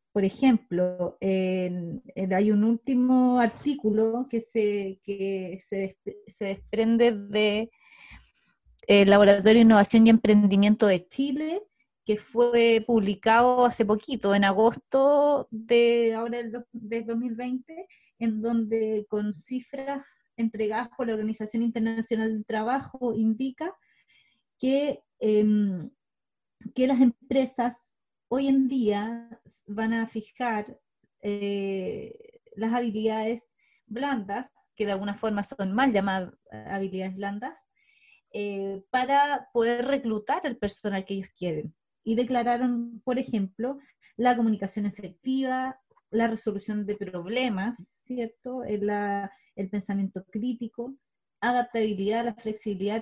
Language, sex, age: Spanish, female, 20-39